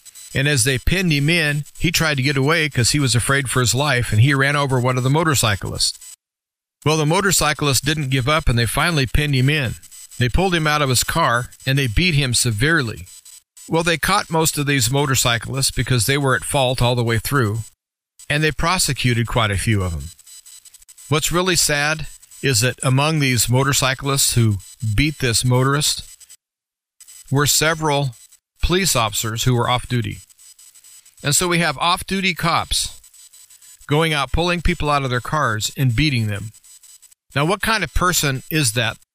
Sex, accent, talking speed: male, American, 180 wpm